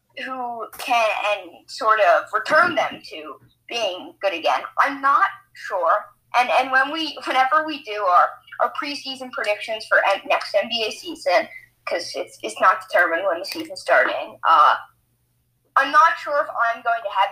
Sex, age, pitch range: female, 10-29, 200-310 Hz